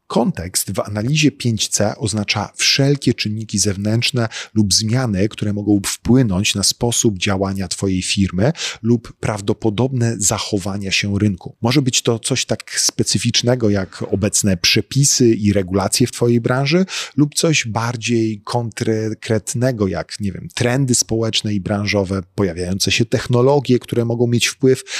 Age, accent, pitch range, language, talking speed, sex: 40-59, native, 100-125 Hz, Polish, 130 wpm, male